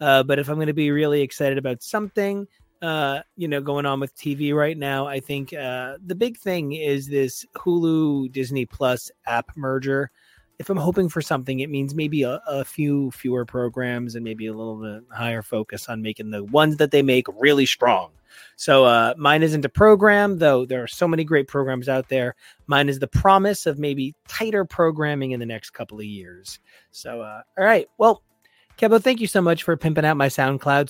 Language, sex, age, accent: English, male, 30-49, American